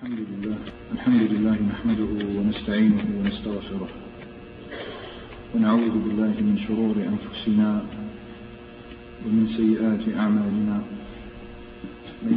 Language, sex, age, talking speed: Arabic, male, 50-69, 80 wpm